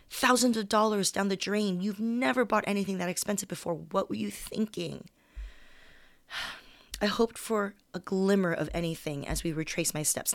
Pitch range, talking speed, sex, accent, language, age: 160-195 Hz, 170 wpm, female, American, English, 30-49